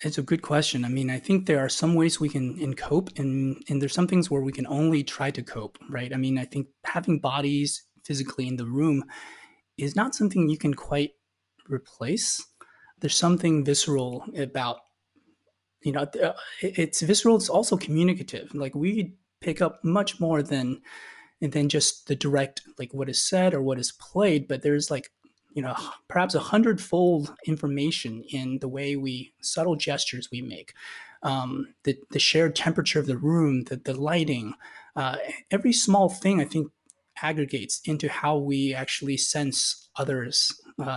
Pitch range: 135-170 Hz